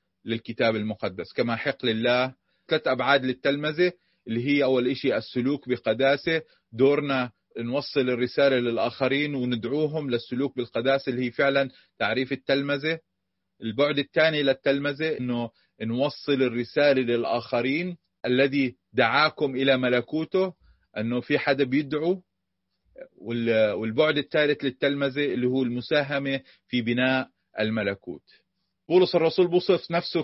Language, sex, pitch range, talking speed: Arabic, male, 125-150 Hz, 105 wpm